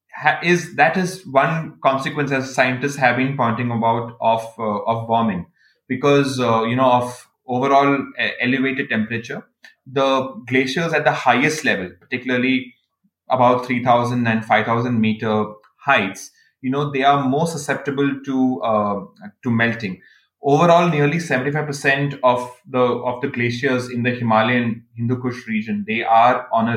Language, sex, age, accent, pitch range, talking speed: English, male, 20-39, Indian, 115-140 Hz, 145 wpm